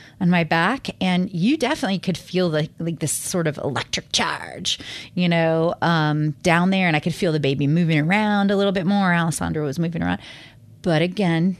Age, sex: 30-49, female